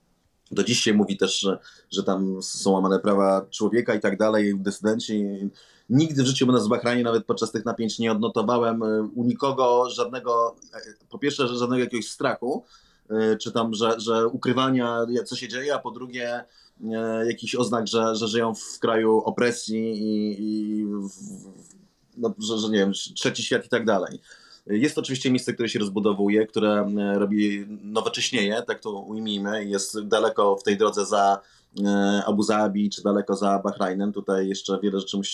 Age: 30-49